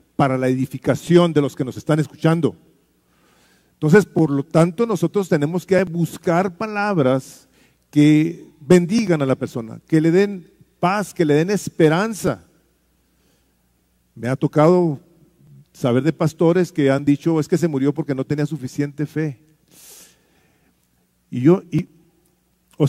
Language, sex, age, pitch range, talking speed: English, male, 40-59, 115-180 Hz, 135 wpm